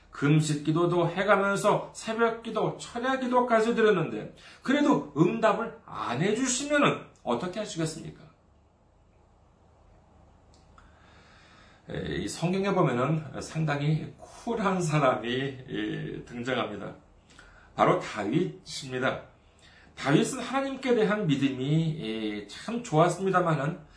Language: Korean